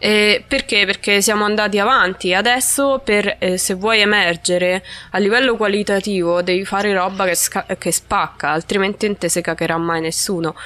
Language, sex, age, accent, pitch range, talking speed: Italian, female, 20-39, native, 185-220 Hz, 140 wpm